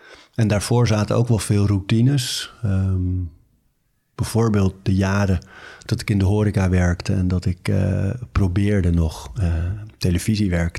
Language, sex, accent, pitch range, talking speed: Dutch, male, Dutch, 95-110 Hz, 140 wpm